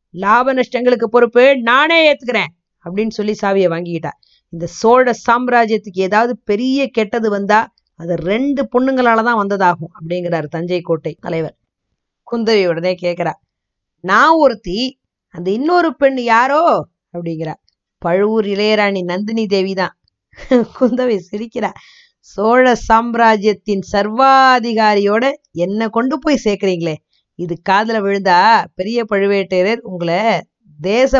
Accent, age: native, 20-39